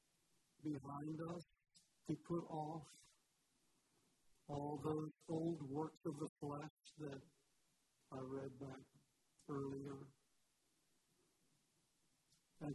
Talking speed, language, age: 85 wpm, English, 60-79